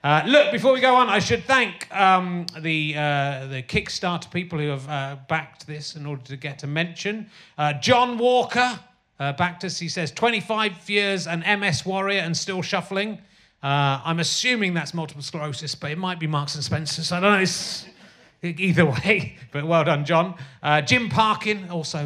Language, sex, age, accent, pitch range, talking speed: English, male, 30-49, British, 135-185 Hz, 190 wpm